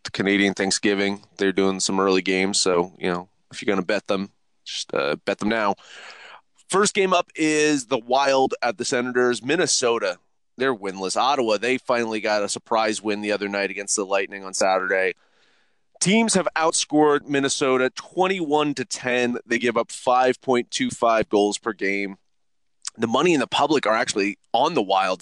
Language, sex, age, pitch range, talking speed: English, male, 30-49, 105-155 Hz, 175 wpm